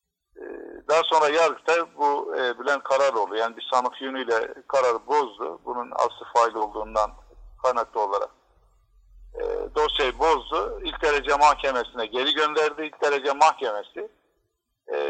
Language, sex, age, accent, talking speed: Turkish, male, 50-69, native, 125 wpm